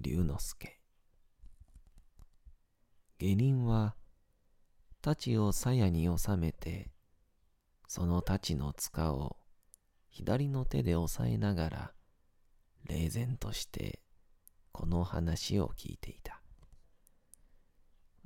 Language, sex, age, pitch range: Japanese, male, 40-59, 80-100 Hz